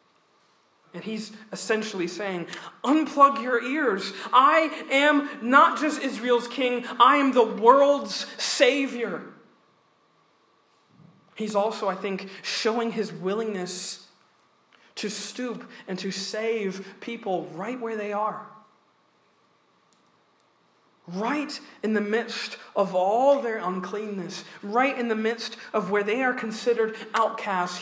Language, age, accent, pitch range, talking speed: English, 40-59, American, 195-255 Hz, 115 wpm